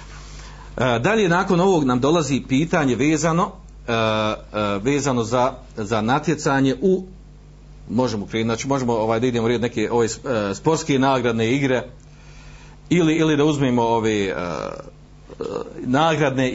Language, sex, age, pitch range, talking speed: Croatian, male, 40-59, 110-160 Hz, 105 wpm